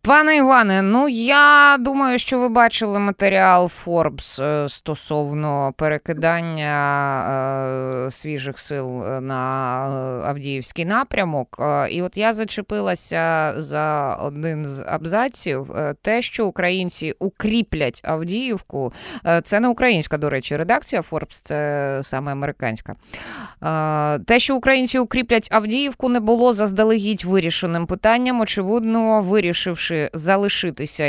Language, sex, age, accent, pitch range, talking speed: Ukrainian, female, 20-39, native, 150-215 Hz, 105 wpm